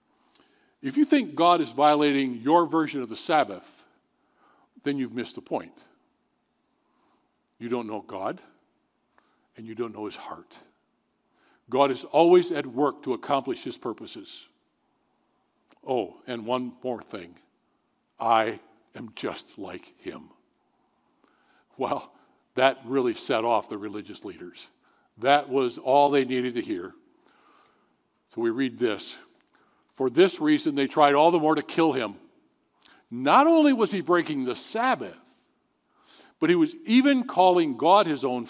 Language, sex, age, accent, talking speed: English, male, 60-79, American, 140 wpm